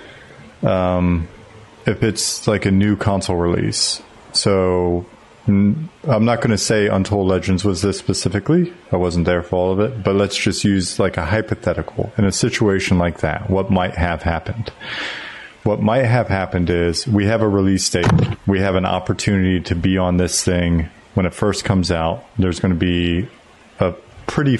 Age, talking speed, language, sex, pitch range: 30-49, 175 wpm, English, male, 85-105 Hz